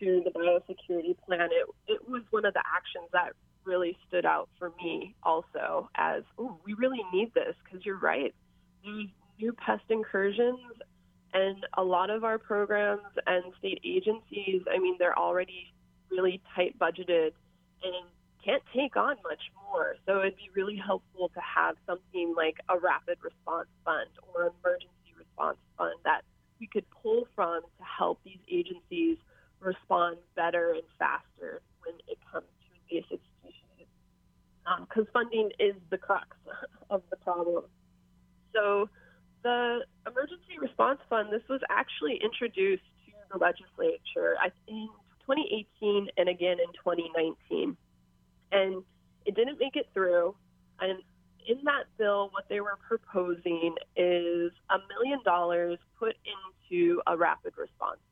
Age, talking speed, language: 20-39, 140 wpm, English